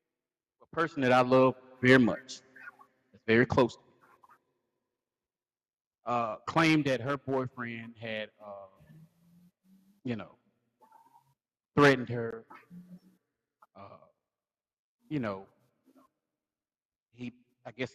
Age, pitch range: 40-59, 100-135 Hz